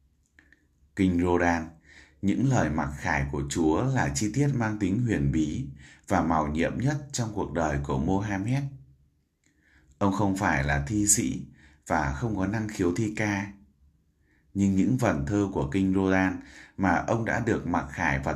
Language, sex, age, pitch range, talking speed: Vietnamese, male, 20-39, 75-100 Hz, 165 wpm